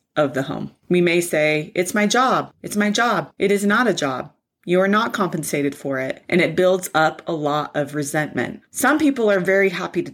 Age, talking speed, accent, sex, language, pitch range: 30-49, 220 wpm, American, female, English, 155-195 Hz